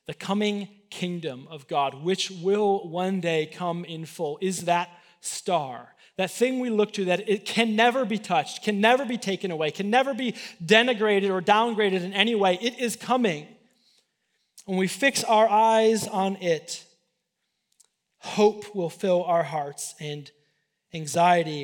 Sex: male